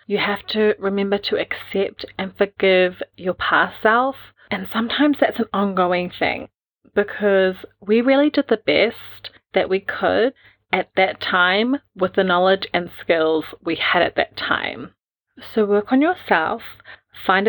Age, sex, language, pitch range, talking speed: 30-49, female, English, 180-230 Hz, 150 wpm